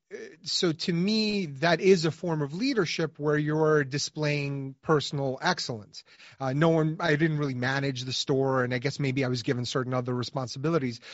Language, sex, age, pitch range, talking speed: English, male, 30-49, 135-165 Hz, 180 wpm